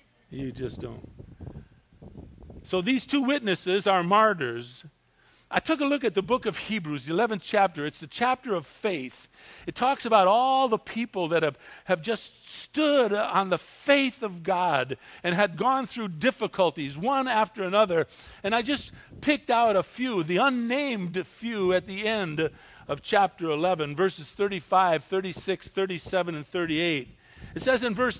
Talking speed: 160 wpm